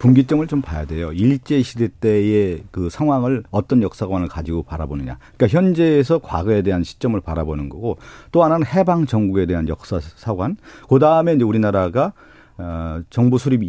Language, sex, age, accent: Korean, male, 40-59, native